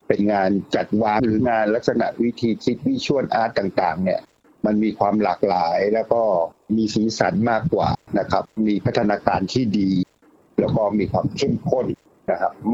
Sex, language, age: male, Thai, 60-79